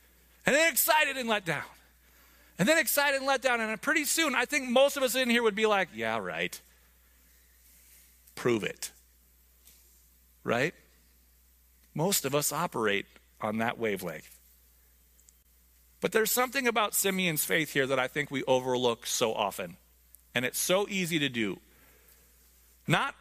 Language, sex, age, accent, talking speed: English, male, 40-59, American, 150 wpm